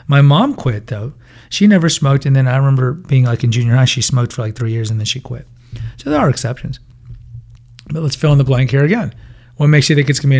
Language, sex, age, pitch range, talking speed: English, male, 40-59, 120-135 Hz, 265 wpm